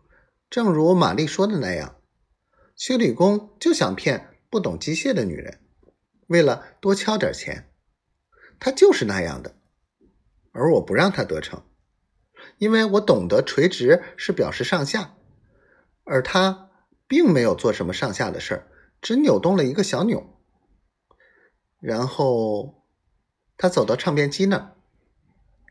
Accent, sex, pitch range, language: native, male, 135-210 Hz, Chinese